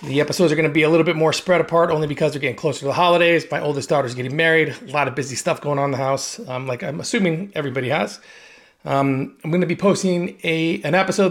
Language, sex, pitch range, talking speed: English, male, 135-175 Hz, 265 wpm